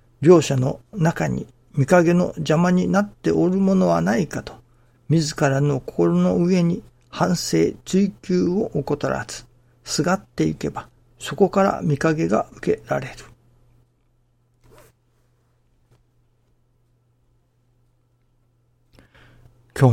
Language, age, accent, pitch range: Japanese, 60-79, native, 120-150 Hz